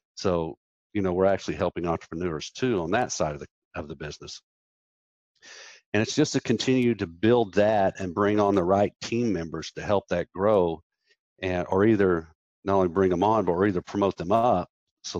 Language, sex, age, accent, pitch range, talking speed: English, male, 50-69, American, 85-105 Hz, 195 wpm